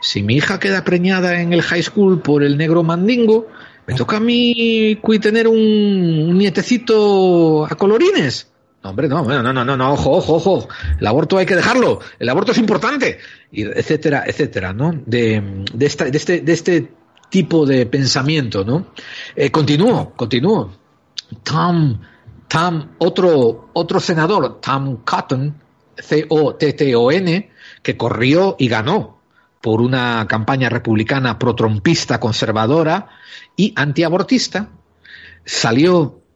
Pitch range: 120-175 Hz